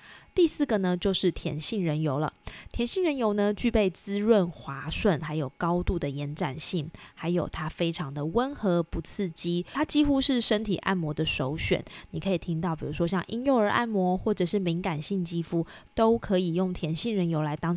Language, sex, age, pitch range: Chinese, female, 20-39, 160-210 Hz